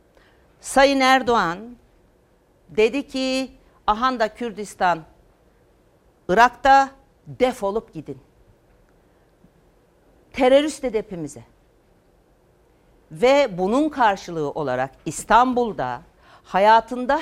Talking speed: 60 wpm